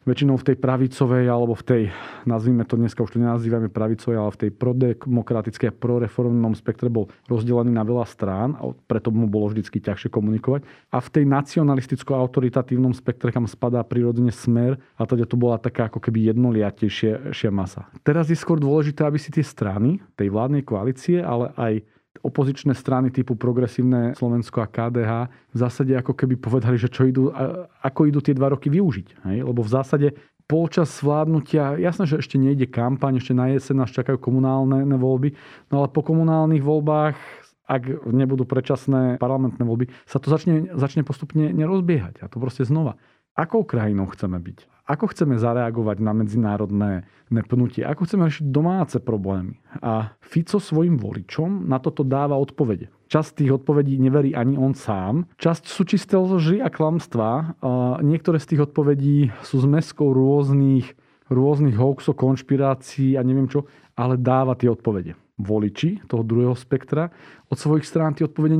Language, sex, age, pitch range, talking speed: Slovak, male, 40-59, 120-145 Hz, 160 wpm